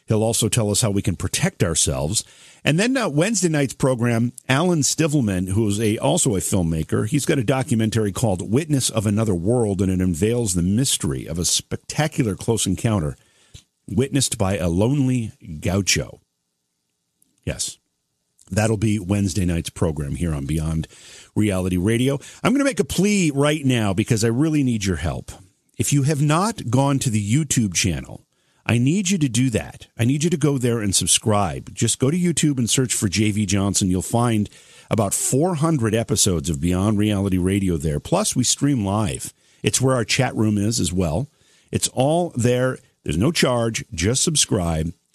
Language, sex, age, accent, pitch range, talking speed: English, male, 50-69, American, 95-130 Hz, 175 wpm